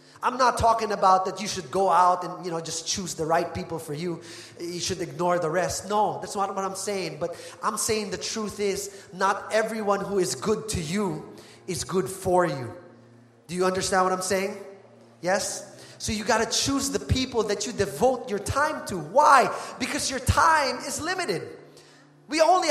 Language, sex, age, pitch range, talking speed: English, male, 20-39, 175-250 Hz, 200 wpm